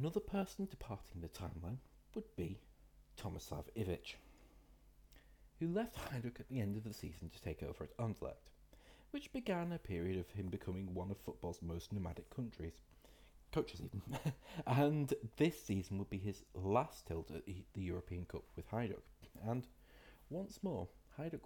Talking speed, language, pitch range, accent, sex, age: 155 wpm, English, 90-135 Hz, British, male, 40-59